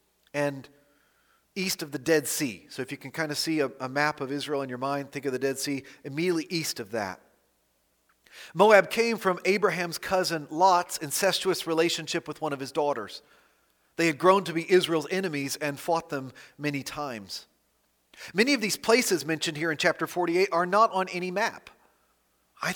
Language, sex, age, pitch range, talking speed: English, male, 40-59, 130-180 Hz, 185 wpm